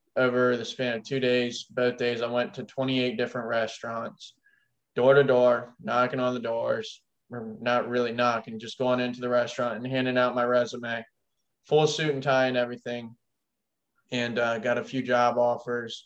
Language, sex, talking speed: English, male, 180 wpm